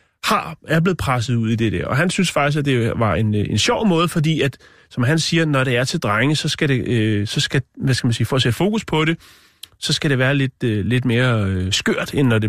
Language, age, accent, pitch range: Danish, 30-49, native, 115-150 Hz